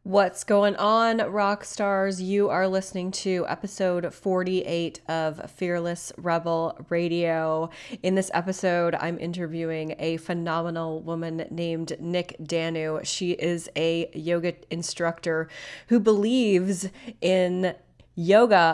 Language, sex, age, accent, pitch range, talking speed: English, female, 20-39, American, 165-190 Hz, 110 wpm